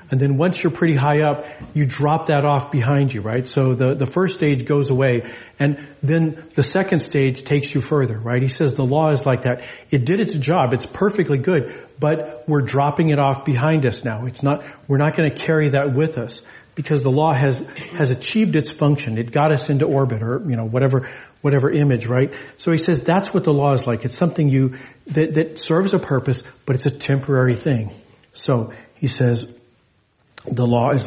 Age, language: 40-59, English